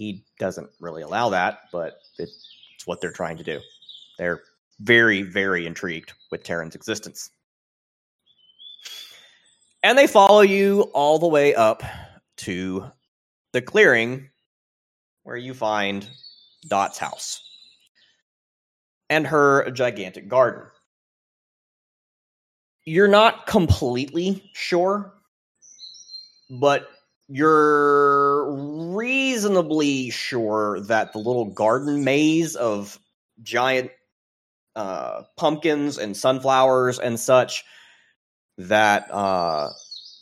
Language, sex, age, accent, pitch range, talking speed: English, male, 30-49, American, 110-155 Hz, 95 wpm